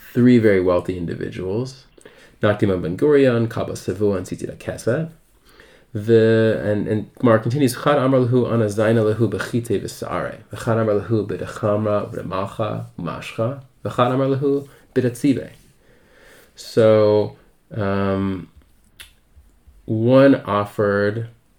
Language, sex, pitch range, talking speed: English, male, 95-115 Hz, 95 wpm